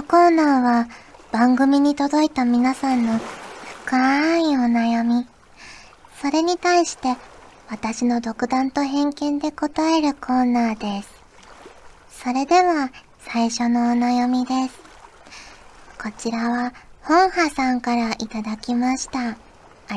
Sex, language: male, Japanese